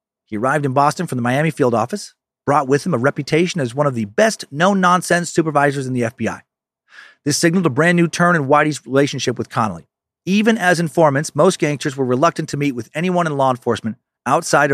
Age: 40-59